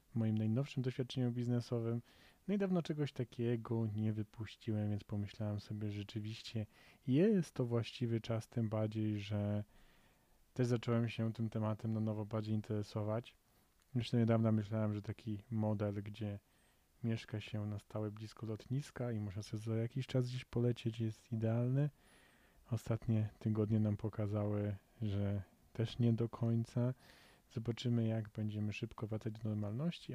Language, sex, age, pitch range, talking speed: Polish, male, 30-49, 105-115 Hz, 140 wpm